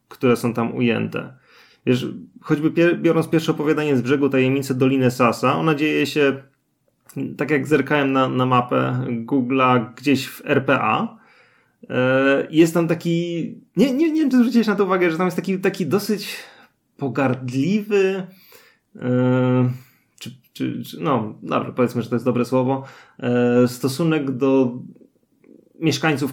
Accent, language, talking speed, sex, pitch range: native, Polish, 135 wpm, male, 125-165 Hz